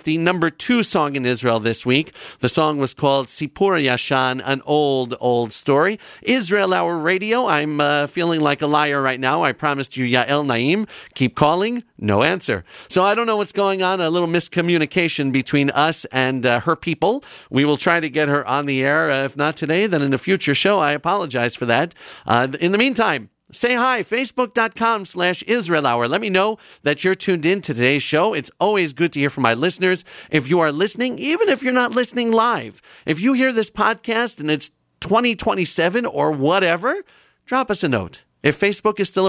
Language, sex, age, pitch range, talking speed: English, male, 40-59, 140-195 Hz, 200 wpm